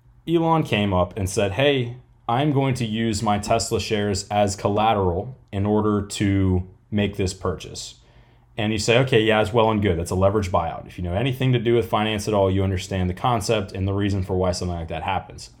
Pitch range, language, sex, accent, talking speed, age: 105-140 Hz, English, male, American, 220 wpm, 20-39